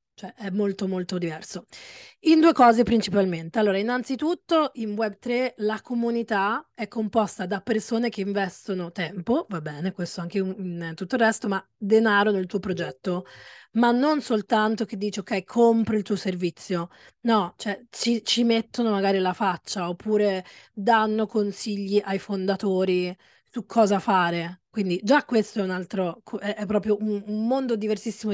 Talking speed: 150 wpm